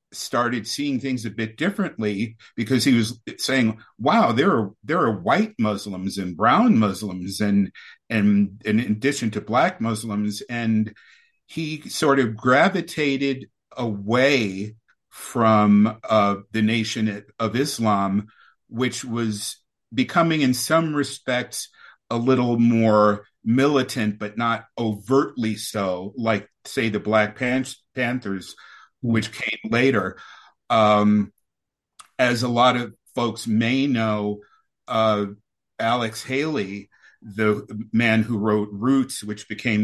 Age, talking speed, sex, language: 50-69, 120 wpm, male, English